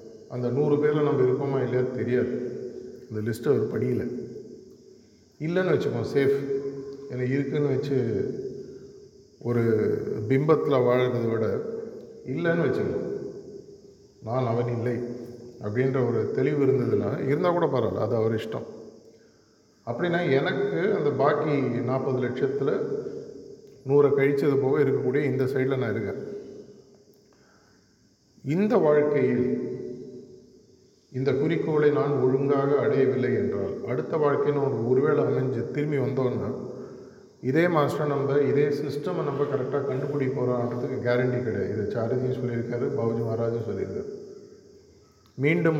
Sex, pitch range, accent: male, 125-145 Hz, native